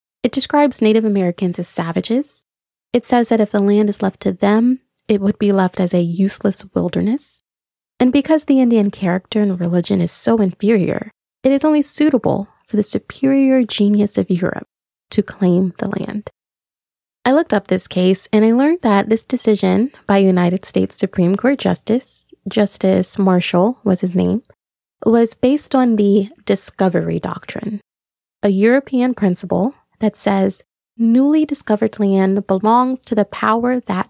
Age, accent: 20-39, American